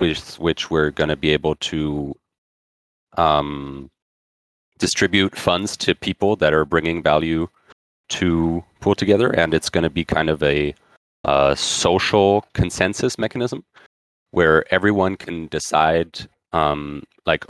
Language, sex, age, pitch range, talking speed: English, male, 30-49, 75-90 Hz, 130 wpm